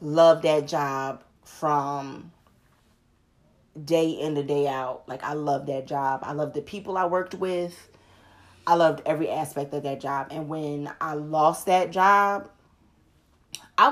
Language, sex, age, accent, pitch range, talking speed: English, female, 20-39, American, 145-180 Hz, 150 wpm